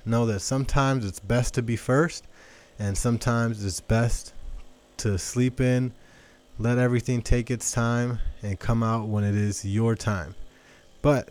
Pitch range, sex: 105-130 Hz, male